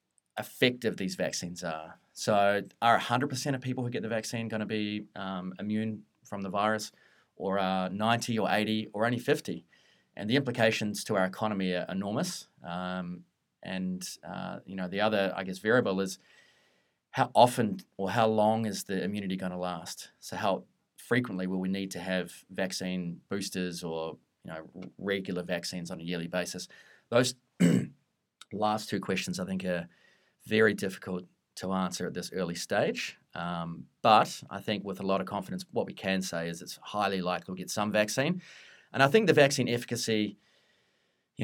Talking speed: 175 wpm